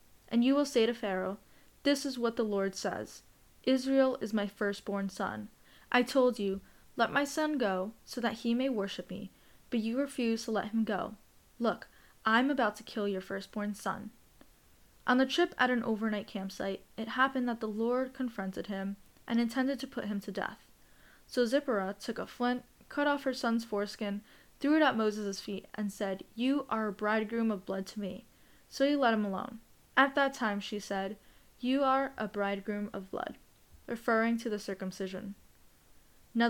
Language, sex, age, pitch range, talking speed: English, female, 10-29, 200-245 Hz, 185 wpm